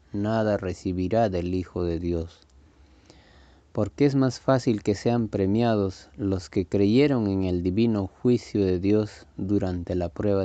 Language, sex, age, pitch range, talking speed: Spanish, male, 30-49, 85-110 Hz, 145 wpm